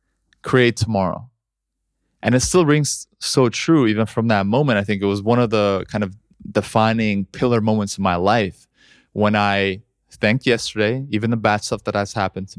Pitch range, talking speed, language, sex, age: 105-125 Hz, 185 wpm, English, male, 20-39